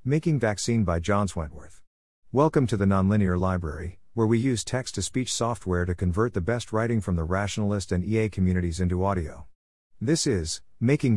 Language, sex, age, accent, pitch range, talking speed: English, male, 50-69, American, 90-115 Hz, 175 wpm